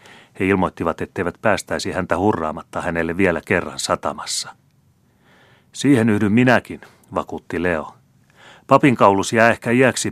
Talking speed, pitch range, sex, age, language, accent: 120 wpm, 85-110 Hz, male, 30-49, Finnish, native